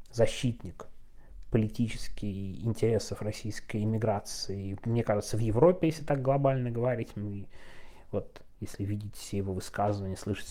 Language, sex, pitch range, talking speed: Russian, male, 105-140 Hz, 120 wpm